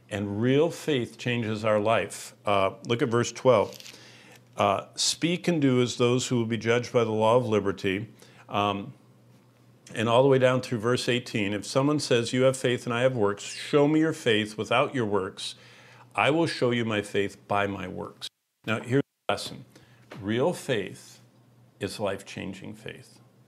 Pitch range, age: 110-145 Hz, 50-69